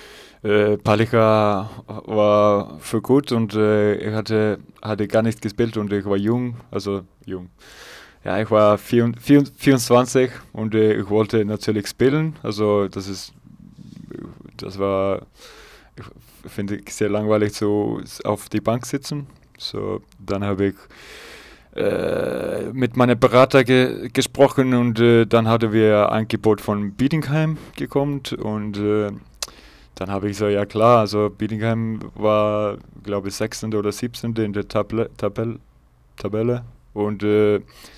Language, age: German, 20-39